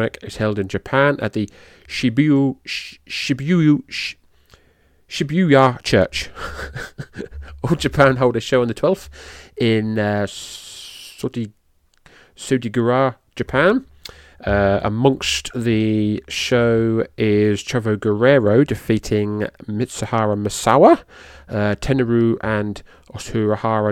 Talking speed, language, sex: 90 wpm, English, male